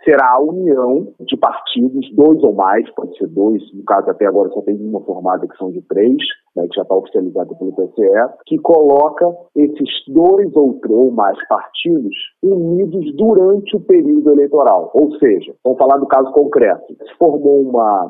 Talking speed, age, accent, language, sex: 180 wpm, 40-59, Brazilian, Portuguese, male